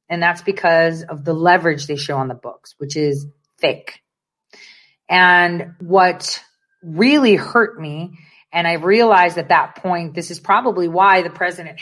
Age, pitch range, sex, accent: 30-49, 160-200 Hz, female, American